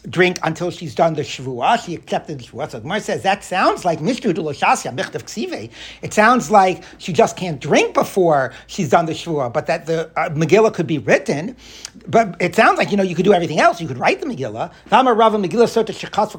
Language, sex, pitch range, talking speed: English, male, 160-205 Hz, 190 wpm